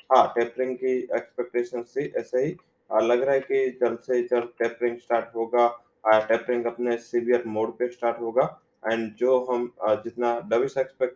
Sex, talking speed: male, 170 wpm